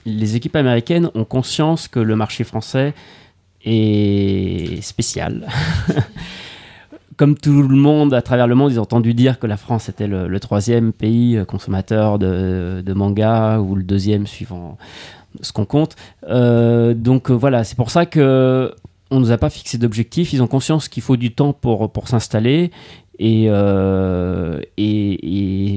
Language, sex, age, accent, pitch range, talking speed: French, male, 30-49, French, 100-130 Hz, 160 wpm